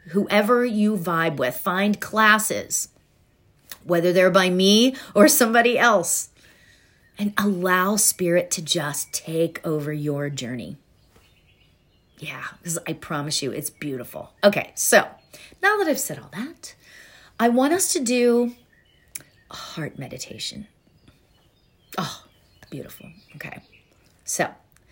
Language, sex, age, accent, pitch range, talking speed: English, female, 40-59, American, 150-210 Hz, 120 wpm